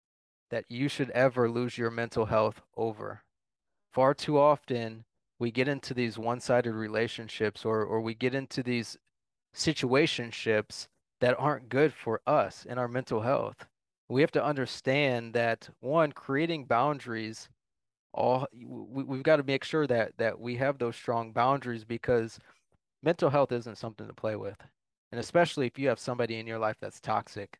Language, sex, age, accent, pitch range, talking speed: English, male, 20-39, American, 110-130 Hz, 160 wpm